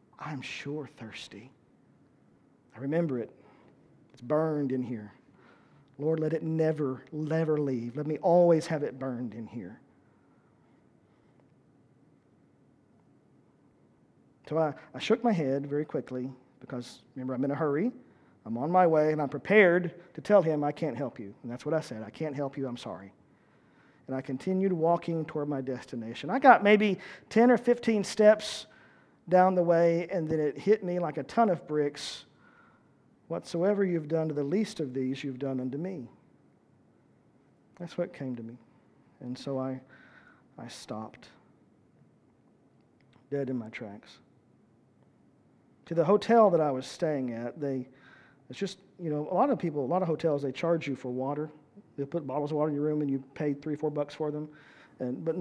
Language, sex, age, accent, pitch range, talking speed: English, male, 50-69, American, 130-170 Hz, 175 wpm